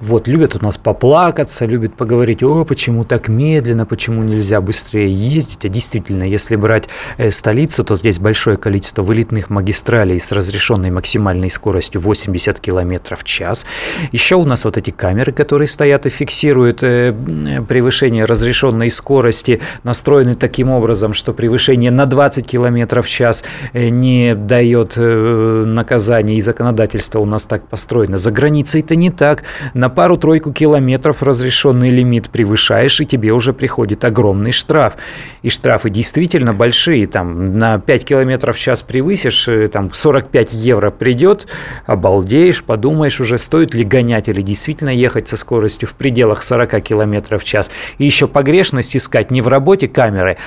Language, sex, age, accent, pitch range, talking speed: Russian, male, 30-49, native, 110-135 Hz, 150 wpm